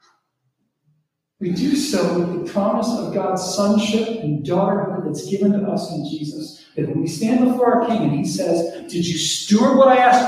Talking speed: 195 wpm